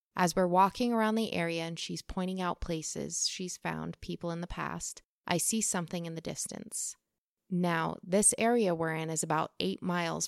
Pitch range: 170-195 Hz